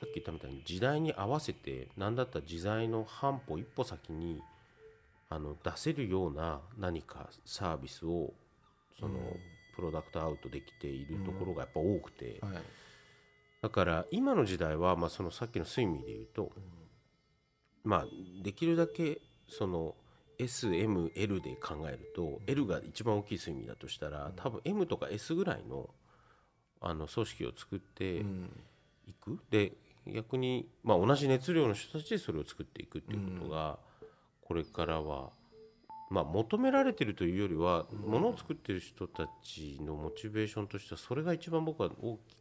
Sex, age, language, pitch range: male, 40-59, Japanese, 85-130 Hz